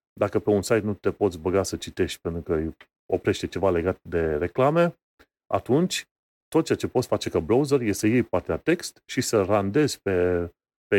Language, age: Romanian, 30-49